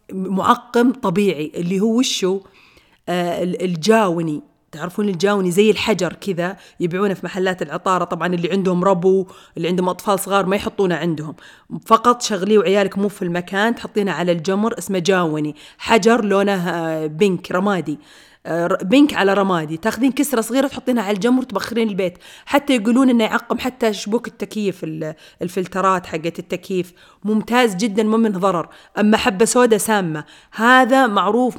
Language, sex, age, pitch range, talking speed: Arabic, female, 30-49, 180-225 Hz, 140 wpm